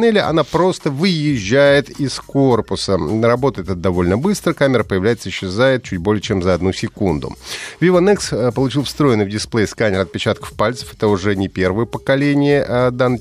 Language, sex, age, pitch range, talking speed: Russian, male, 30-49, 95-135 Hz, 150 wpm